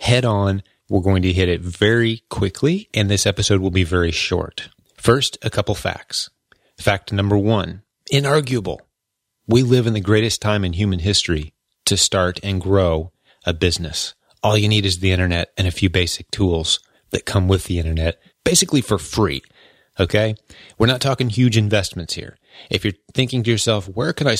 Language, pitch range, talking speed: English, 95-115 Hz, 180 wpm